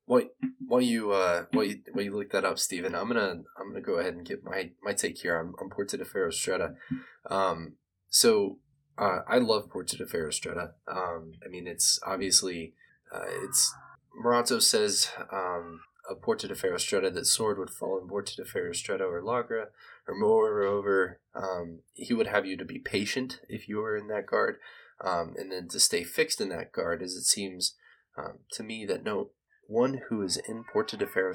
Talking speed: 195 wpm